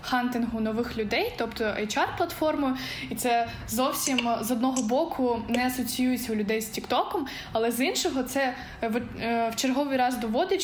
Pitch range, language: 230-265 Hz, Ukrainian